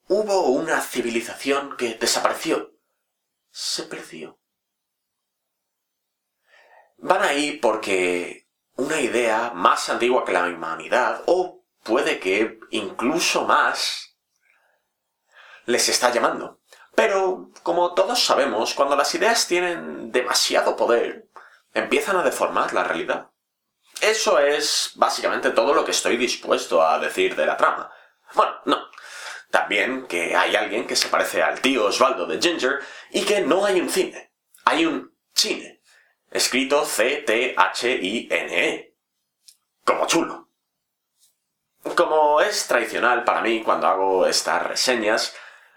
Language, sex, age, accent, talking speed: Spanish, male, 30-49, Spanish, 115 wpm